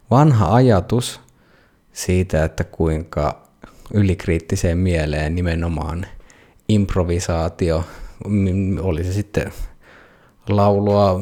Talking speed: 70 wpm